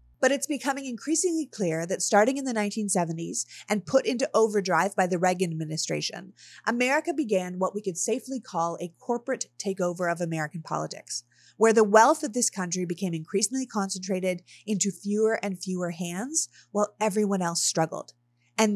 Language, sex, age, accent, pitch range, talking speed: English, female, 30-49, American, 175-225 Hz, 160 wpm